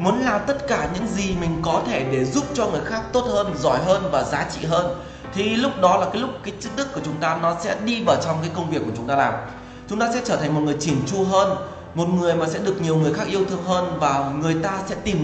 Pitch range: 155-200 Hz